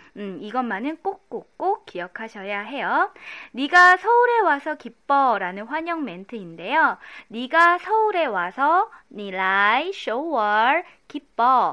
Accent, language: native, Korean